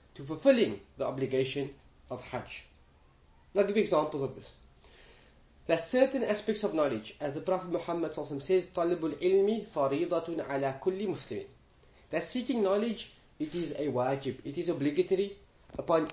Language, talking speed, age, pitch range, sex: English, 135 wpm, 30-49, 140-200 Hz, male